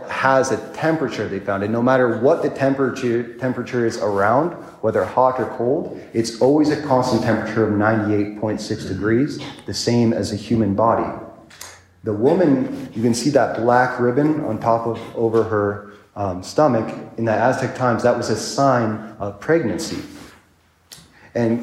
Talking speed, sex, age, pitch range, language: 160 wpm, male, 30-49, 105-125 Hz, English